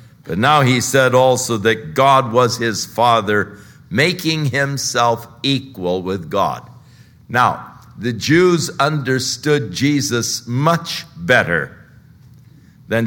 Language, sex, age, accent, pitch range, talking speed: English, male, 60-79, American, 115-145 Hz, 105 wpm